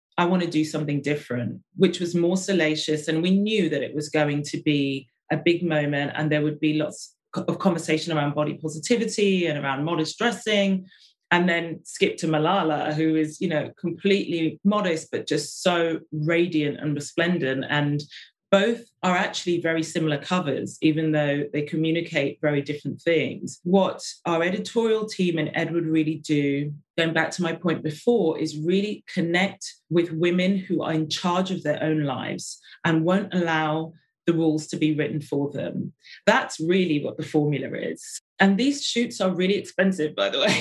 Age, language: 30-49, English